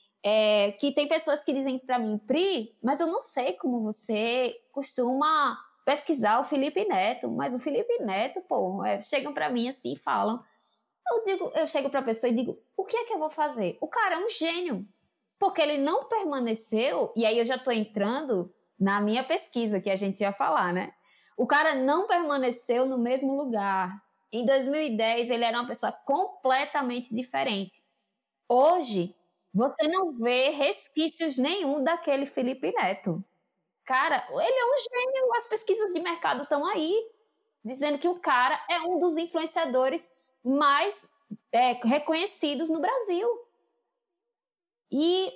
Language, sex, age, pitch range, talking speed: Portuguese, female, 20-39, 235-335 Hz, 155 wpm